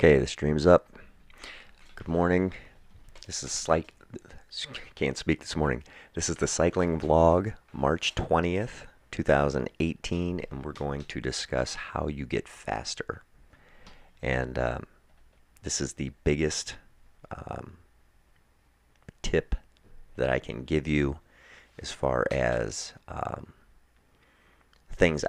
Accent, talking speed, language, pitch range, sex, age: American, 120 wpm, English, 65-75 Hz, male, 40-59